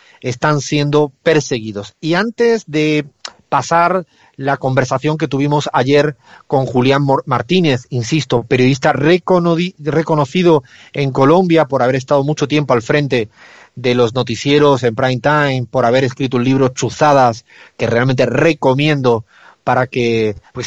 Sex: male